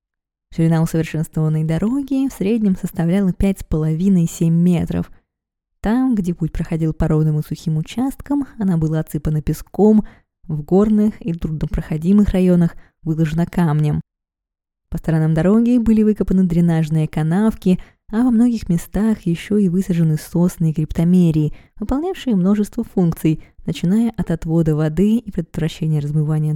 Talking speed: 125 wpm